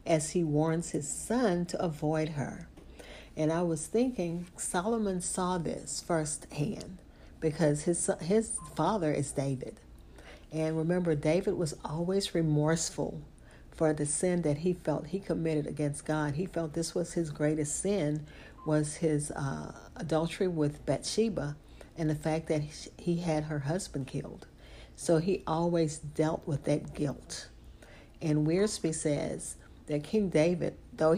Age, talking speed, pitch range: 50-69, 140 wpm, 150-170 Hz